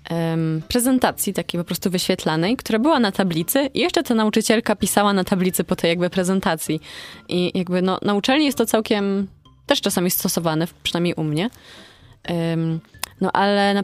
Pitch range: 165-200 Hz